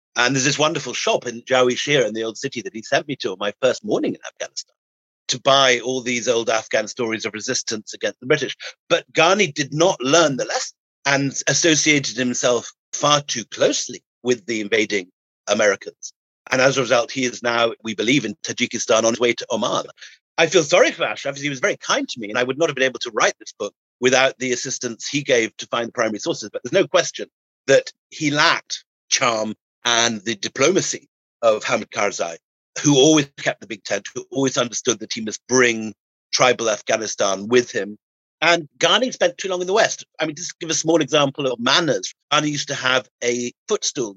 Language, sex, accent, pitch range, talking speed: English, male, British, 120-155 Hz, 210 wpm